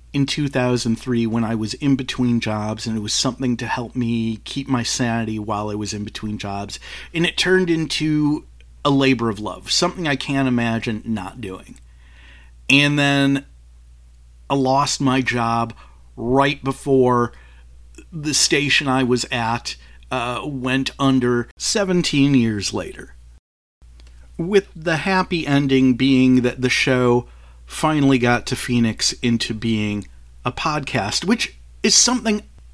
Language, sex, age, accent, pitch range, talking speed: English, male, 40-59, American, 105-140 Hz, 140 wpm